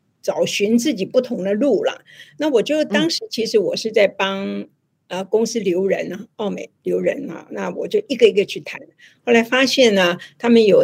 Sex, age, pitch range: female, 50-69, 195-290 Hz